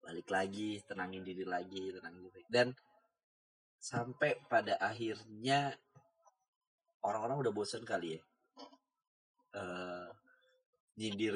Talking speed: 90 wpm